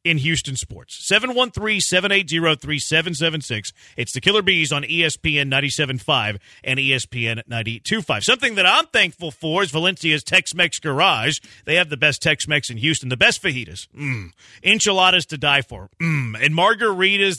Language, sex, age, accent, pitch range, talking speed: English, male, 40-59, American, 135-185 Hz, 140 wpm